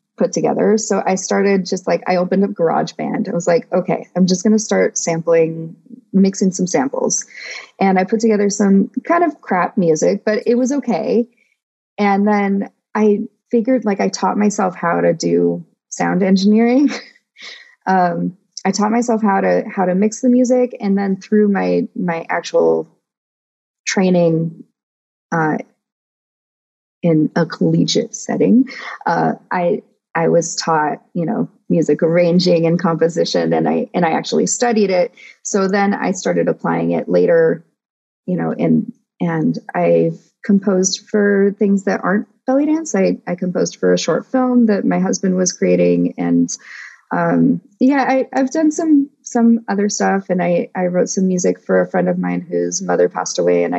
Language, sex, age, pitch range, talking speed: English, female, 30-49, 170-230 Hz, 165 wpm